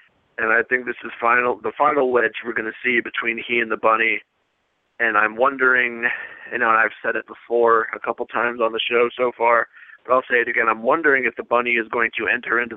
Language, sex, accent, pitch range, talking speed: English, male, American, 115-130 Hz, 235 wpm